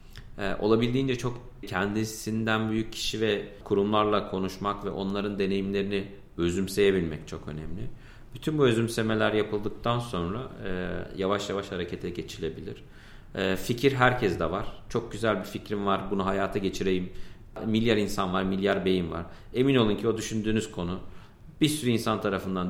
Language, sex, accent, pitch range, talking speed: Turkish, male, native, 95-120 Hz, 135 wpm